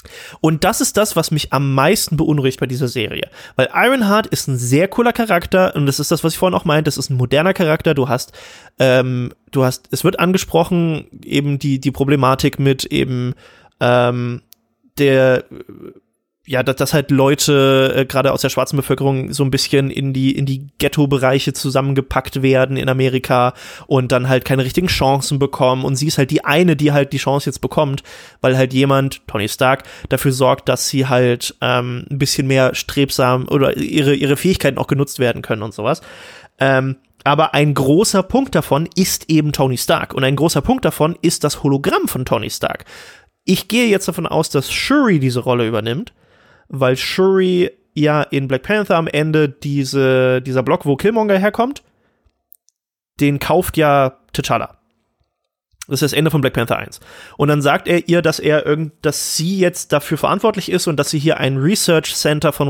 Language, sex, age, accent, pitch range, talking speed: German, male, 20-39, German, 130-155 Hz, 185 wpm